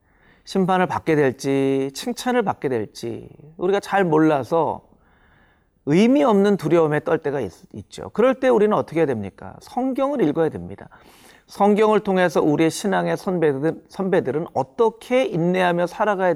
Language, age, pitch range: Korean, 40-59, 130-185 Hz